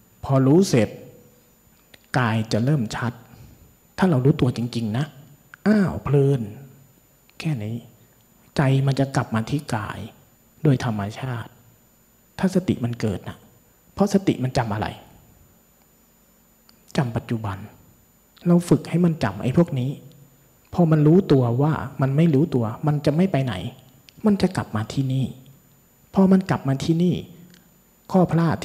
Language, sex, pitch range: Thai, male, 115-155 Hz